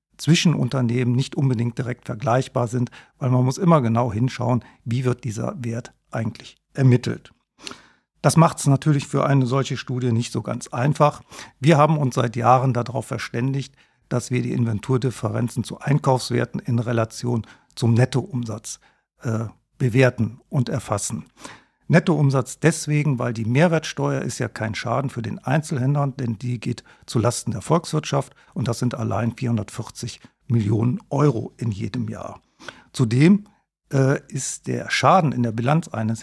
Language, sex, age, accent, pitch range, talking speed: German, male, 50-69, German, 115-140 Hz, 150 wpm